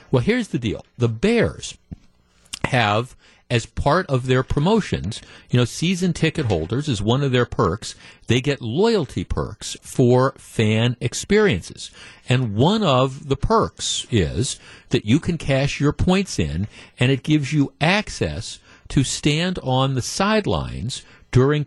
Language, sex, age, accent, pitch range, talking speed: English, male, 50-69, American, 115-155 Hz, 145 wpm